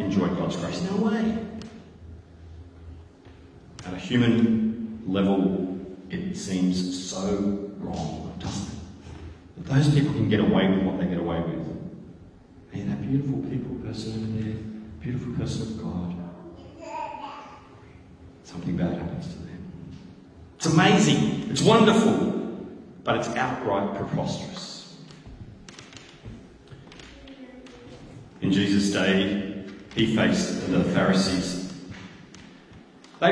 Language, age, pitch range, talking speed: English, 40-59, 95-150 Hz, 105 wpm